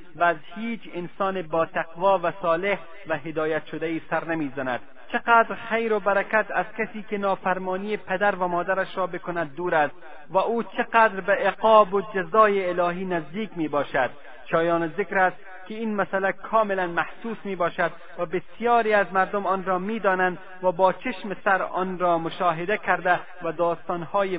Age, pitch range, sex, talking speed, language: 30-49, 155-190 Hz, male, 165 wpm, Persian